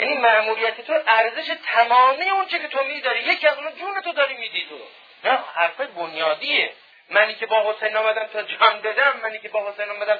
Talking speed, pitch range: 200 wpm, 175-245 Hz